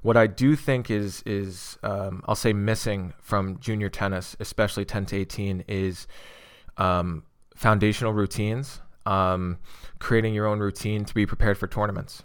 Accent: American